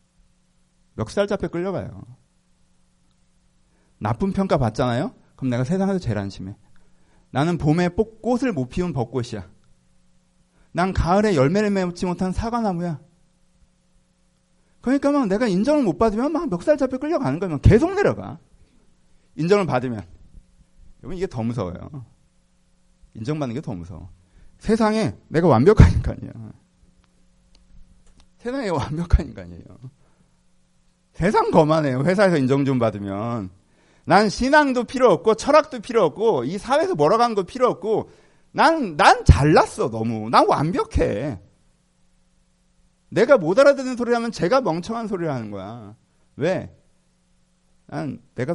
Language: Korean